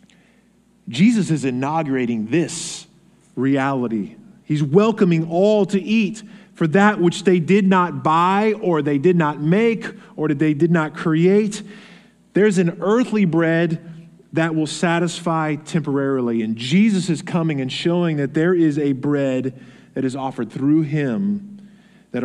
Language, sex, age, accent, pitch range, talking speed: English, male, 20-39, American, 135-200 Hz, 145 wpm